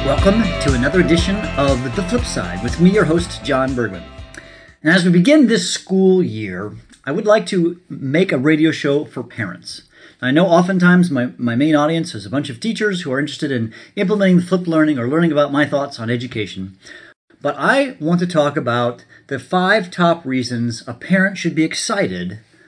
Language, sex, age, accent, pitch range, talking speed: English, male, 40-59, American, 125-170 Hz, 190 wpm